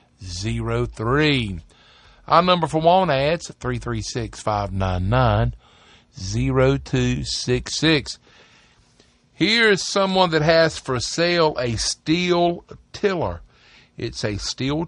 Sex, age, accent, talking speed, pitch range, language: male, 50-69, American, 85 wpm, 110-145 Hz, English